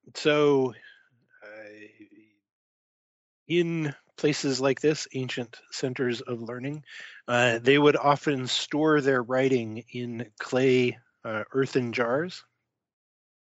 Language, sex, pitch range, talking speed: English, male, 110-135 Hz, 100 wpm